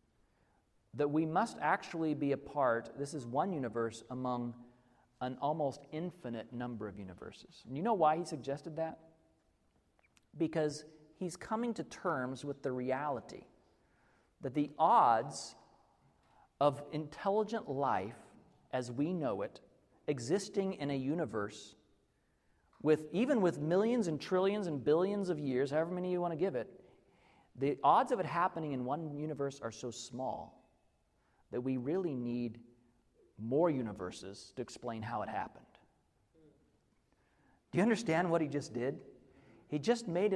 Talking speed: 140 wpm